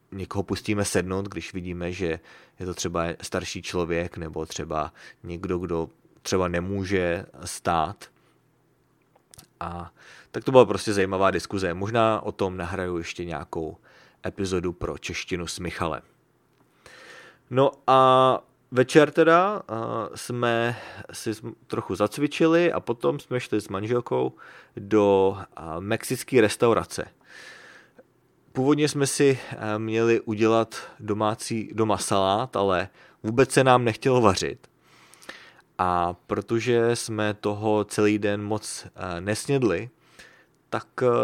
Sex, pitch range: male, 90-115 Hz